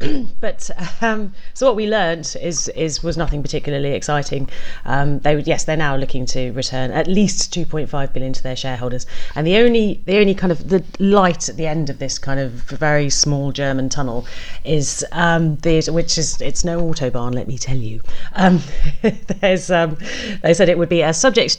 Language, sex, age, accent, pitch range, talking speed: English, female, 30-49, British, 130-175 Hz, 195 wpm